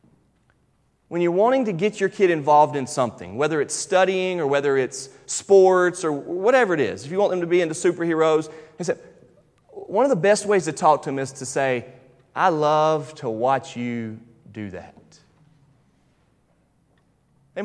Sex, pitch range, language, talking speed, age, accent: male, 135-195 Hz, English, 165 wpm, 30-49, American